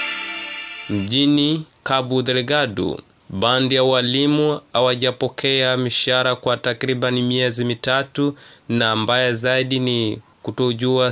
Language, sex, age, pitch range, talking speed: English, male, 30-49, 115-130 Hz, 85 wpm